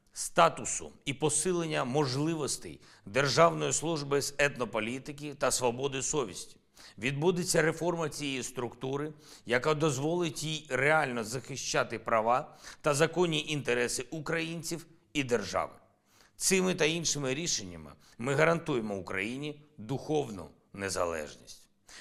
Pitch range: 110-150 Hz